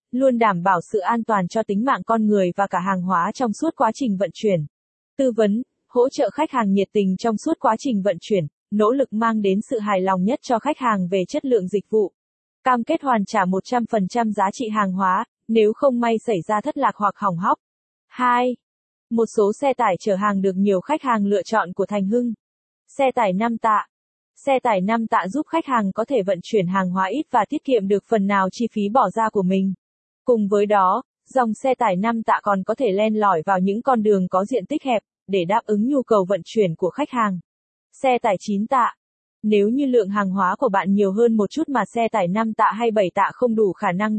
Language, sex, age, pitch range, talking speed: Vietnamese, female, 20-39, 200-245 Hz, 235 wpm